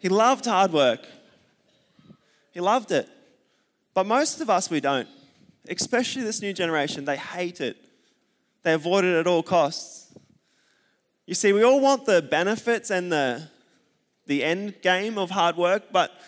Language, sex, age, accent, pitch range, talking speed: English, male, 20-39, Australian, 150-185 Hz, 155 wpm